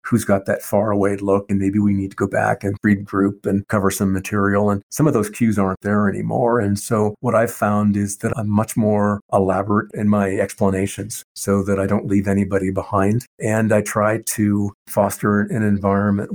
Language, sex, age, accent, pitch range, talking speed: English, male, 50-69, American, 95-105 Hz, 200 wpm